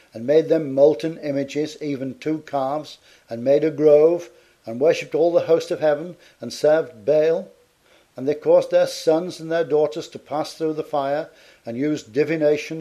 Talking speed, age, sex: 180 wpm, 50-69, male